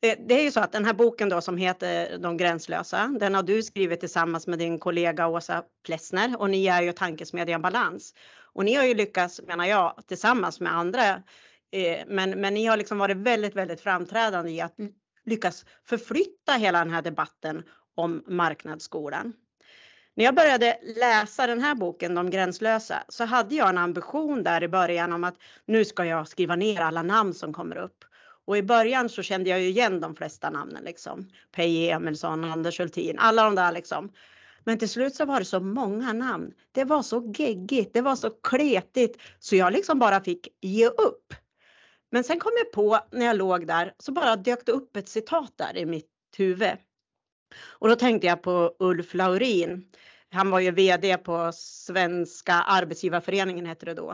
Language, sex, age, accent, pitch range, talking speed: Swedish, female, 30-49, native, 175-230 Hz, 185 wpm